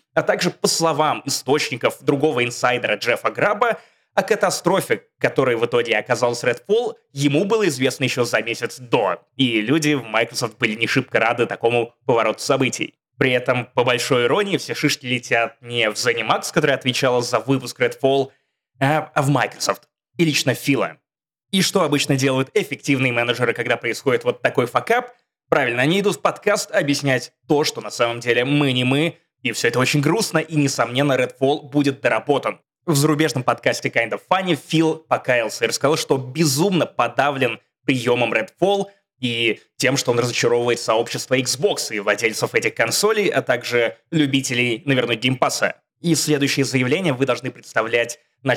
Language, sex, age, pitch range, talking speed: Russian, male, 20-39, 125-160 Hz, 160 wpm